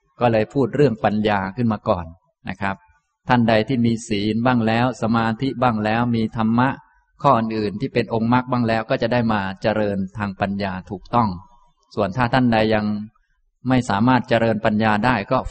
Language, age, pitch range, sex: Thai, 20-39, 100-120 Hz, male